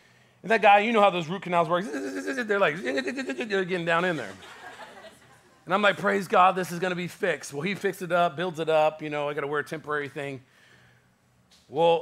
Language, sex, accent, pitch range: English, male, American, 135-180 Hz